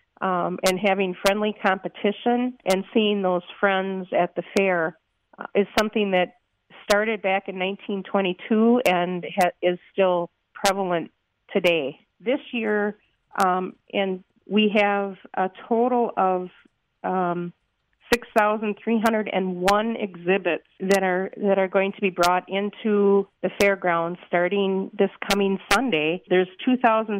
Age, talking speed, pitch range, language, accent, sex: 40-59, 130 wpm, 185-215 Hz, English, American, female